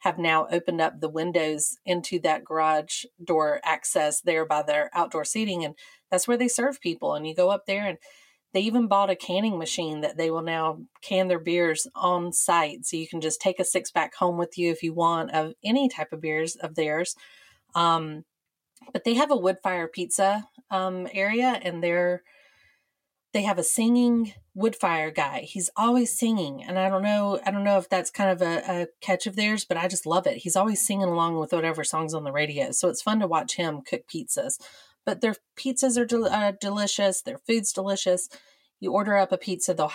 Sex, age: female, 30-49